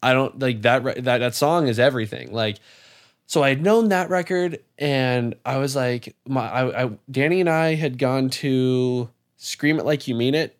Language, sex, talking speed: English, male, 200 wpm